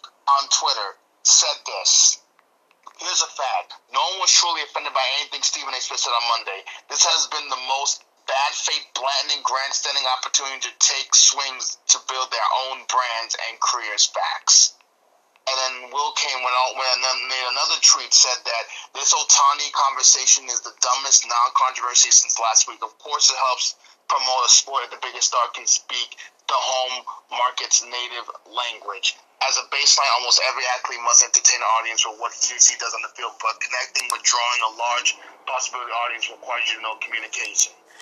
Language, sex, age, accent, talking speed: English, male, 30-49, American, 180 wpm